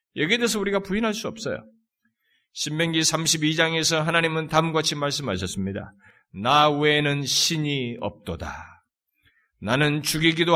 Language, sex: Korean, male